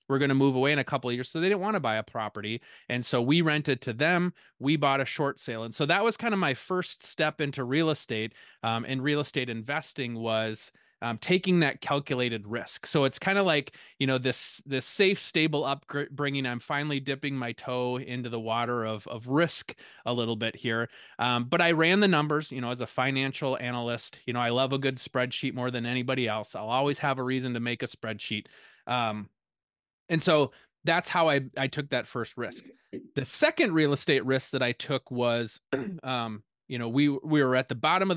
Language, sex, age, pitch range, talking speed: English, male, 30-49, 120-145 Hz, 220 wpm